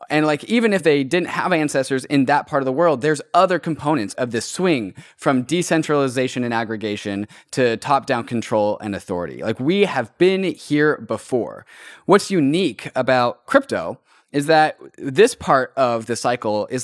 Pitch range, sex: 115-155 Hz, male